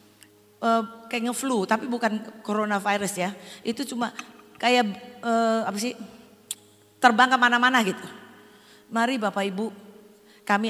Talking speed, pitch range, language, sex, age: 110 wpm, 180-230 Hz, Indonesian, female, 40-59